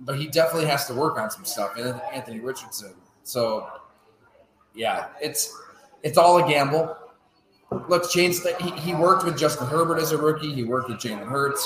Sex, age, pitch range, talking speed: male, 30-49, 115-155 Hz, 185 wpm